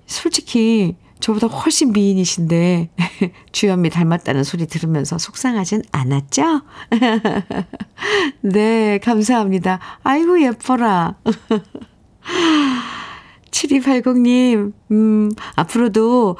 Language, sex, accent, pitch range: Korean, female, native, 175-250 Hz